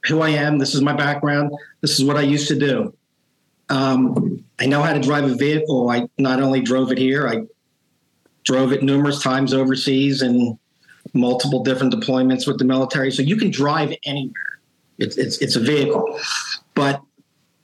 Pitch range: 130-155 Hz